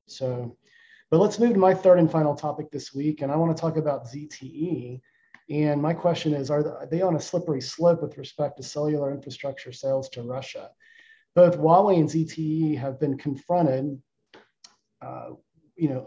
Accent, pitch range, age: American, 135-165 Hz, 40-59